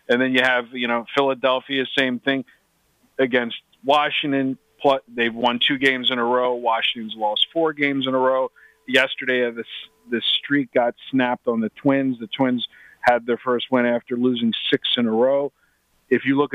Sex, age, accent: male, 40-59, American